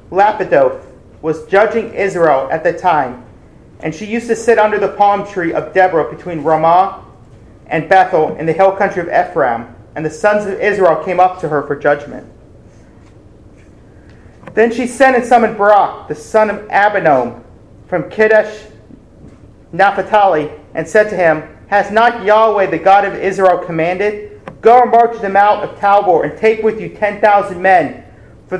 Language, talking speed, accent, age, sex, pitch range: English, 165 wpm, American, 40-59, male, 160-210 Hz